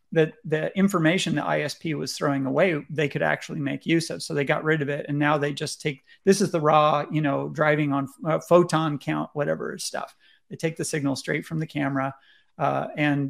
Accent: American